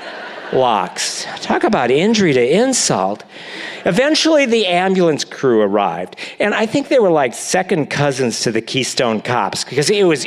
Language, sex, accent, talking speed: English, male, American, 150 wpm